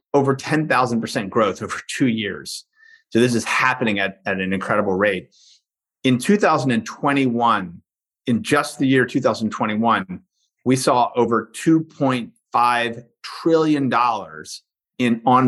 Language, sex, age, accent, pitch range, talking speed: English, male, 30-49, American, 110-135 Hz, 160 wpm